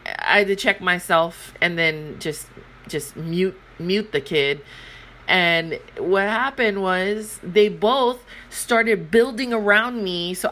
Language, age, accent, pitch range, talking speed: English, 30-49, American, 175-230 Hz, 135 wpm